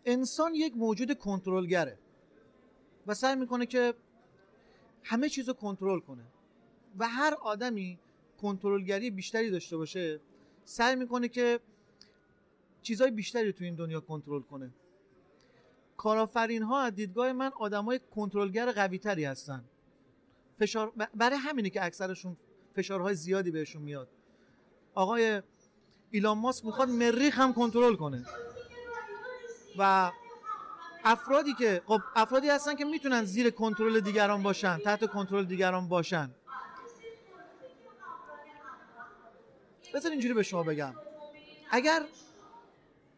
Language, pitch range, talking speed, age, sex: Persian, 190-260 Hz, 110 wpm, 40-59, male